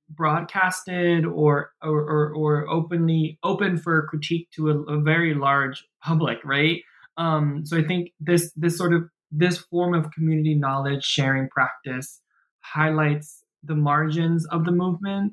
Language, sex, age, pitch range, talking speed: English, male, 20-39, 145-165 Hz, 145 wpm